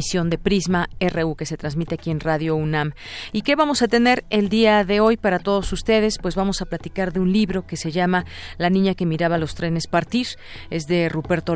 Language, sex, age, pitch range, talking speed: Spanish, female, 40-59, 160-190 Hz, 220 wpm